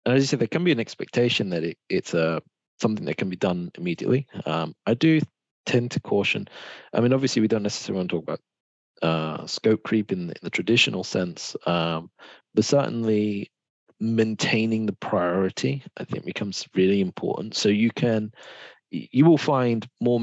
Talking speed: 185 wpm